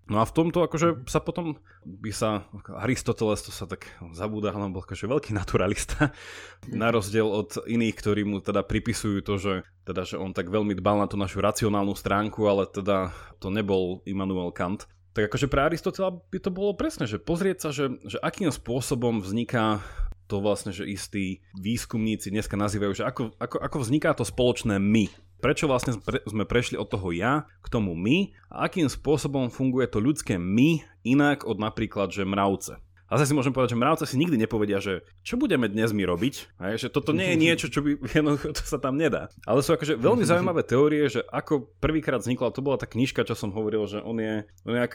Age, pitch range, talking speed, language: 20-39, 100-130 Hz, 200 wpm, Slovak